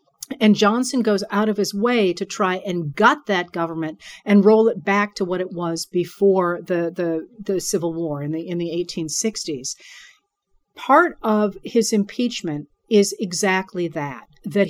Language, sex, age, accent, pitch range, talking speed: English, female, 50-69, American, 185-230 Hz, 165 wpm